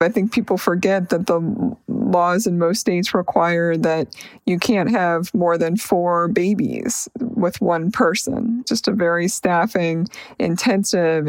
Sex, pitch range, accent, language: female, 185-245 Hz, American, English